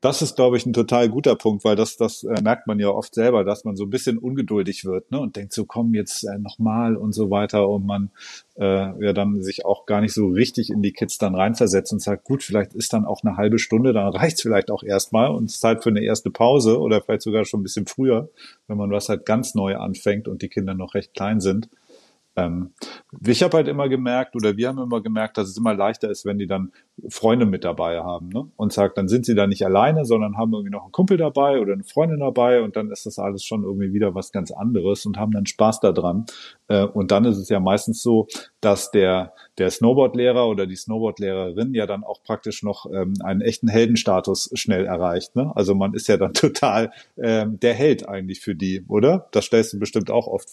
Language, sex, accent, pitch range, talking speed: German, male, German, 100-115 Hz, 235 wpm